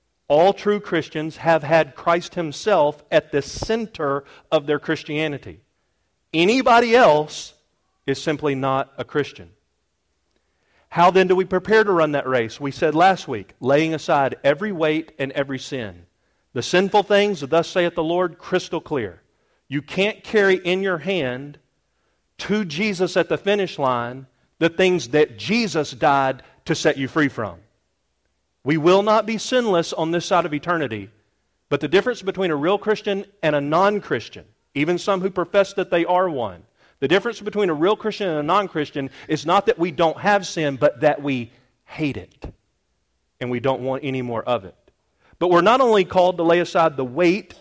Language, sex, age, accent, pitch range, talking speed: English, male, 40-59, American, 135-185 Hz, 175 wpm